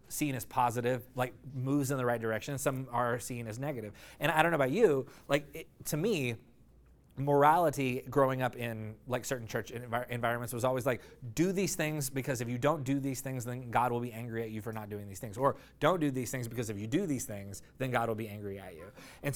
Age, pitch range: 30-49, 120-150 Hz